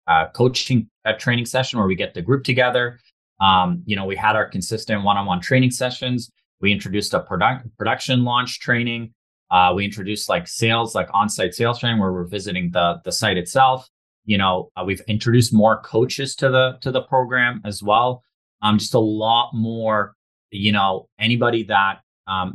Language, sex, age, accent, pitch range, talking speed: English, male, 30-49, American, 90-115 Hz, 190 wpm